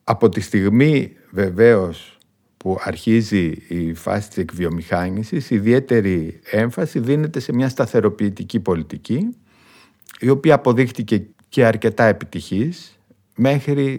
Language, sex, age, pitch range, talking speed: Greek, male, 50-69, 95-120 Hz, 105 wpm